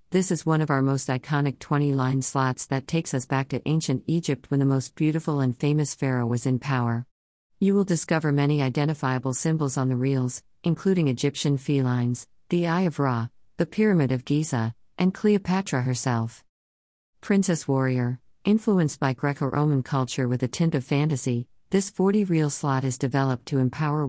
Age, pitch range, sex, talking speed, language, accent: 50-69, 125-155 Hz, female, 165 wpm, English, American